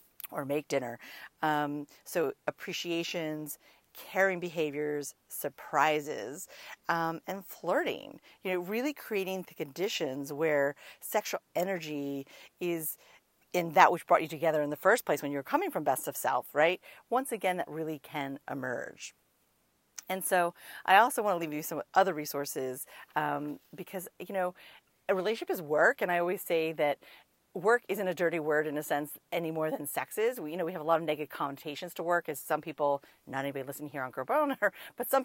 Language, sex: English, female